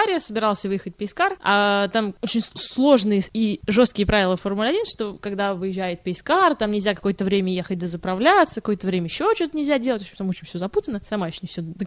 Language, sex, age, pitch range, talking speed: Russian, female, 20-39, 205-315 Hz, 195 wpm